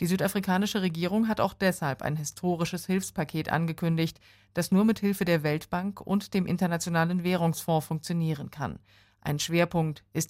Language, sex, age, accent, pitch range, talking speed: German, female, 40-59, German, 150-175 Hz, 145 wpm